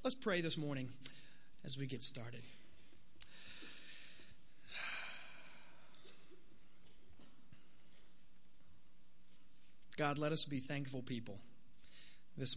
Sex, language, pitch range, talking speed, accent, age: male, English, 125-160 Hz, 70 wpm, American, 30-49